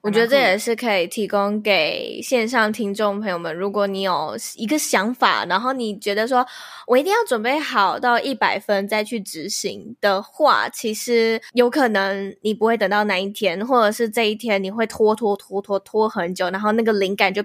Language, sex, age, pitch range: Chinese, female, 10-29, 200-245 Hz